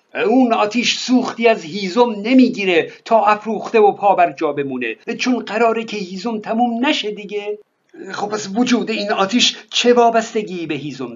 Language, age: Persian, 50-69